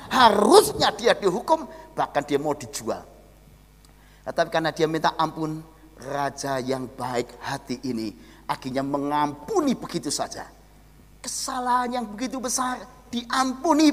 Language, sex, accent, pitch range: Indonesian, male, native, 200-310 Hz